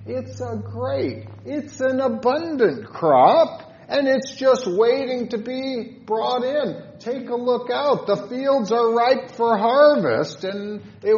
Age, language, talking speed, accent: 50-69, English, 145 wpm, American